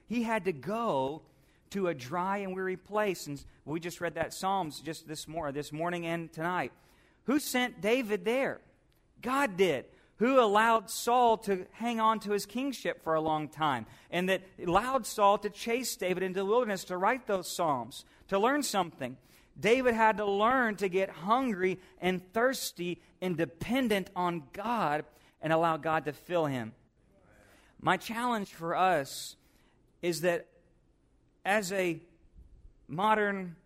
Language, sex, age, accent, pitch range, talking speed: English, male, 40-59, American, 150-205 Hz, 155 wpm